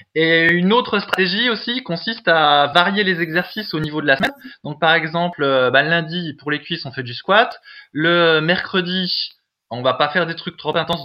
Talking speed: 205 wpm